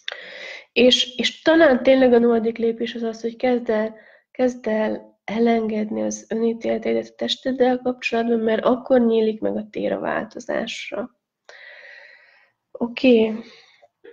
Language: Hungarian